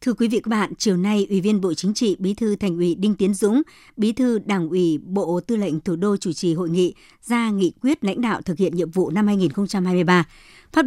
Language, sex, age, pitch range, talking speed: Vietnamese, male, 60-79, 175-220 Hz, 245 wpm